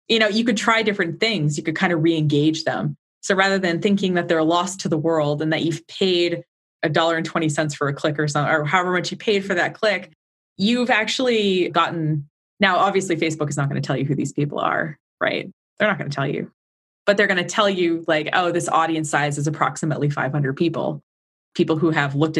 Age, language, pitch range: 20-39, English, 145-185 Hz